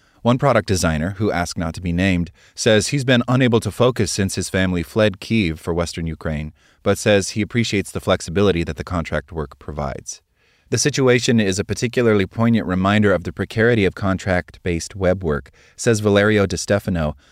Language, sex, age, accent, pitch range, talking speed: English, male, 30-49, American, 85-110 Hz, 175 wpm